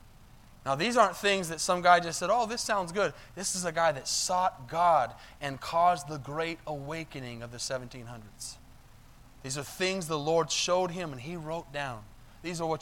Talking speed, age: 195 wpm, 30-49